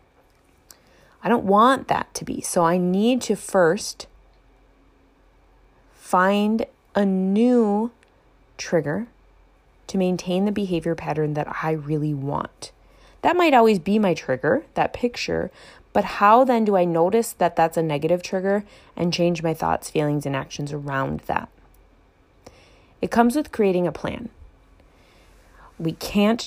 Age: 20-39